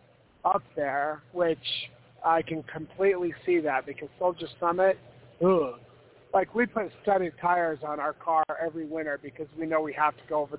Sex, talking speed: male, 165 wpm